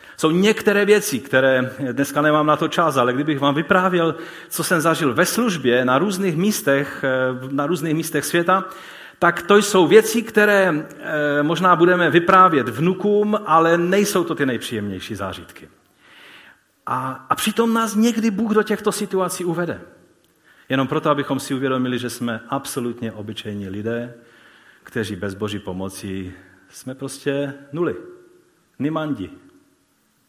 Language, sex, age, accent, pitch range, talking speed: Czech, male, 40-59, native, 120-185 Hz, 130 wpm